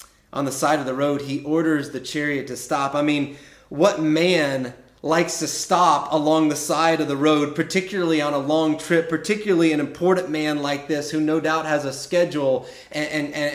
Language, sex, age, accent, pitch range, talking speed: English, male, 30-49, American, 105-140 Hz, 195 wpm